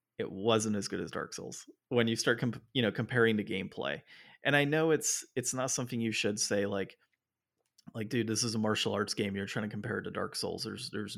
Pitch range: 105-125 Hz